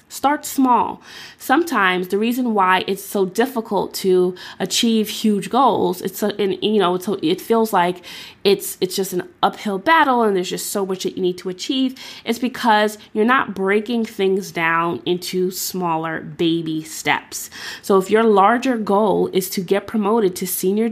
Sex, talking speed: female, 175 wpm